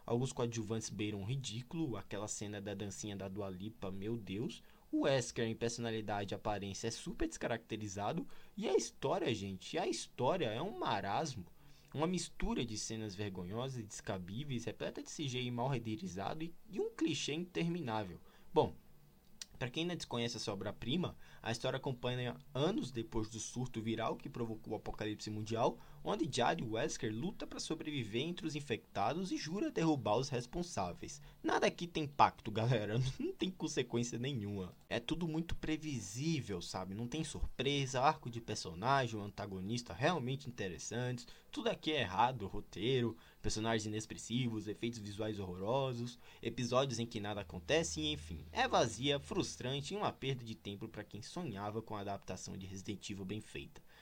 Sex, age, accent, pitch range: male, 20-39, Brazilian, 105-135 Hz